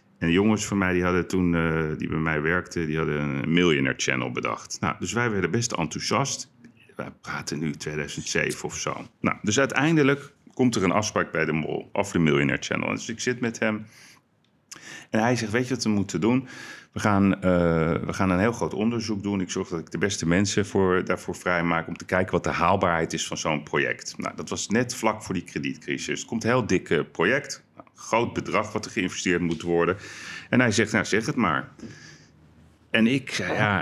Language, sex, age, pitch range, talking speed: Dutch, male, 40-59, 80-115 Hz, 210 wpm